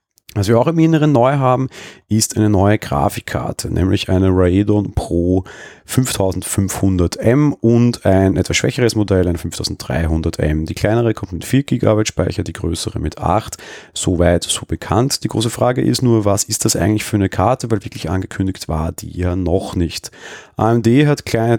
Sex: male